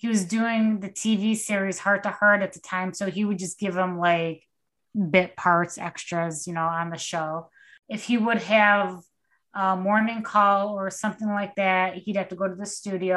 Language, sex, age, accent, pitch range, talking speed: English, female, 20-39, American, 180-215 Hz, 205 wpm